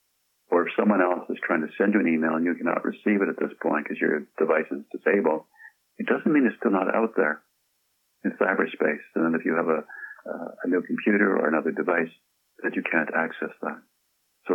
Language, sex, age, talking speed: English, male, 60-79, 220 wpm